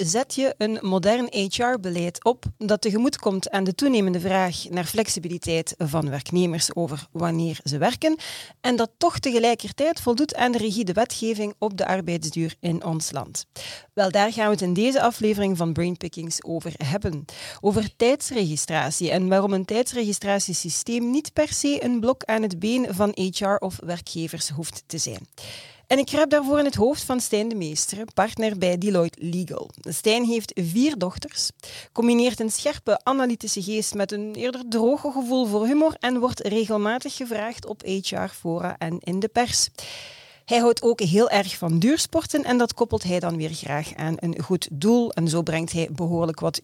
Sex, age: female, 40-59